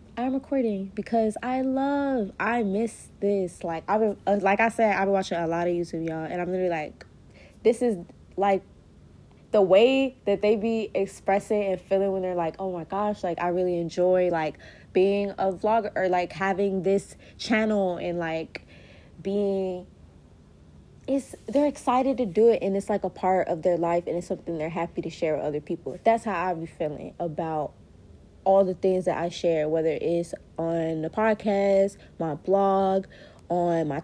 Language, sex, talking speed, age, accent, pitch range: English, female, 180 wpm, 20-39, American, 170-215 Hz